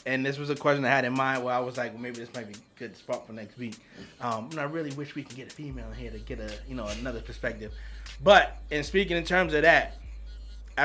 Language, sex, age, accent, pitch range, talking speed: English, male, 20-39, American, 115-150 Hz, 275 wpm